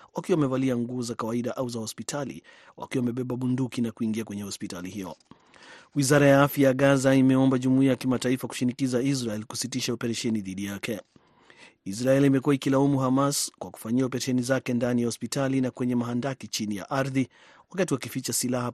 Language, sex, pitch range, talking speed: Swahili, male, 110-130 Hz, 155 wpm